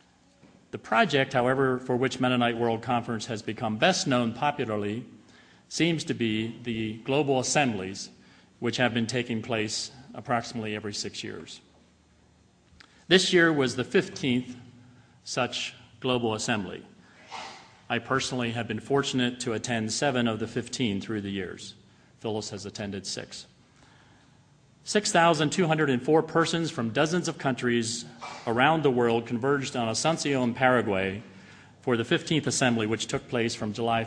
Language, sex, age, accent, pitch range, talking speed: English, male, 40-59, American, 115-135 Hz, 135 wpm